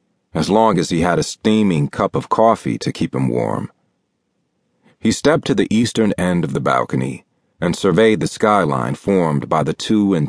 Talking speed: 185 wpm